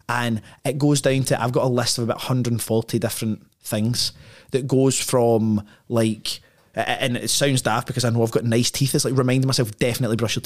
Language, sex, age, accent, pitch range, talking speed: English, male, 20-39, British, 115-135 Hz, 205 wpm